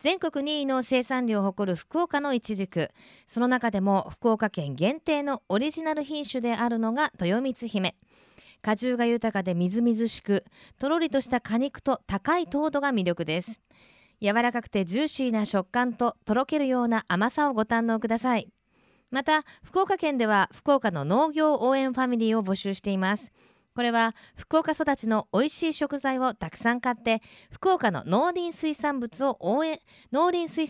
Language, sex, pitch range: Japanese, female, 200-275 Hz